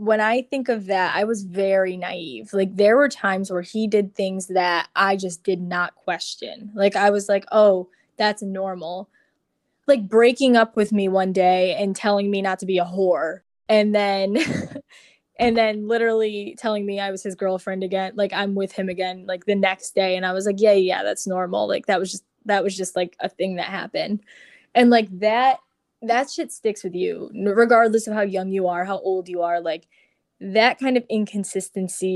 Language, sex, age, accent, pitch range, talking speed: English, female, 10-29, American, 185-220 Hz, 205 wpm